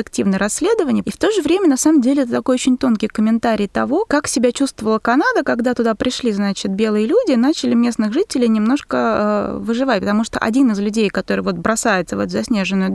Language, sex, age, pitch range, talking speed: Russian, female, 20-39, 220-275 Hz, 195 wpm